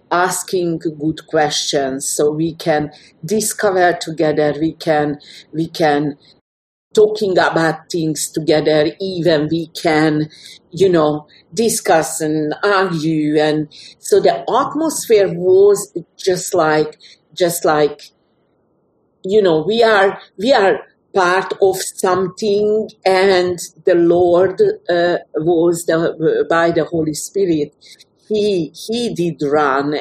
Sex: female